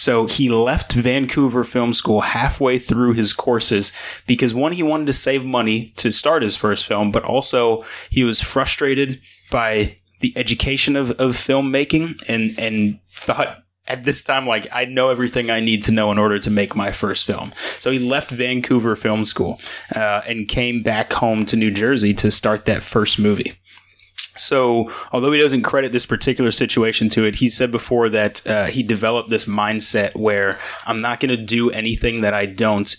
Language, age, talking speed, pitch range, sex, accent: English, 20-39, 185 wpm, 105-125 Hz, male, American